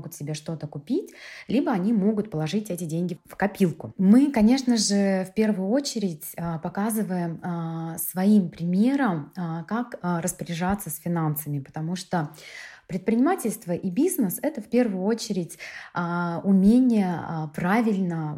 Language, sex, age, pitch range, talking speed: Russian, female, 20-39, 170-215 Hz, 115 wpm